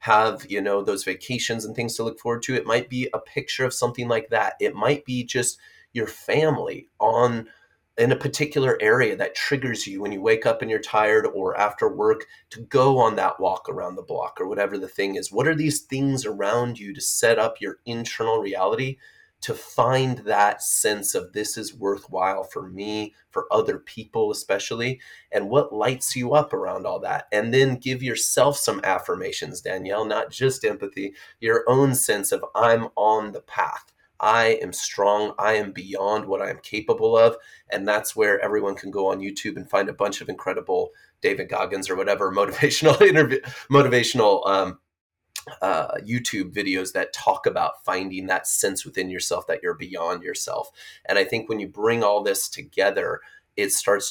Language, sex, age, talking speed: English, male, 30-49, 185 wpm